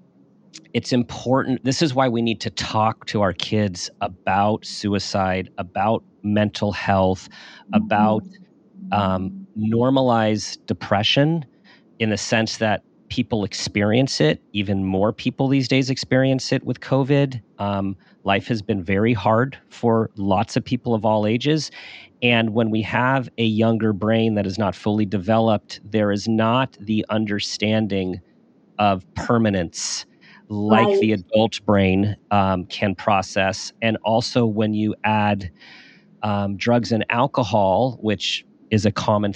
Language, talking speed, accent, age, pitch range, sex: English, 135 wpm, American, 40-59, 105-120 Hz, male